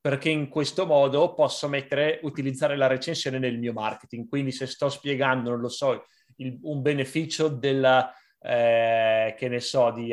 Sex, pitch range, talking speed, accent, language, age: male, 125-145 Hz, 165 wpm, native, Italian, 30-49